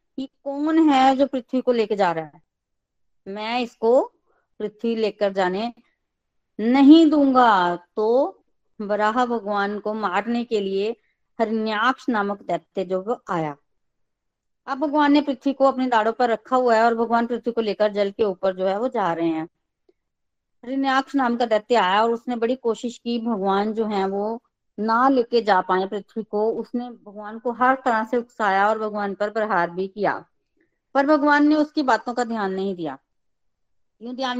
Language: Hindi